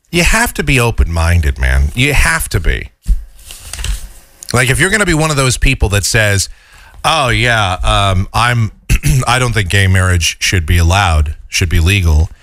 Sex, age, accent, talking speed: male, 40-59, American, 180 wpm